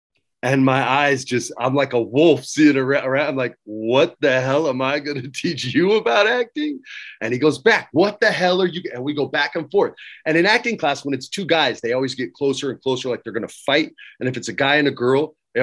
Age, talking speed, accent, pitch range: 30-49, 255 wpm, American, 125-165 Hz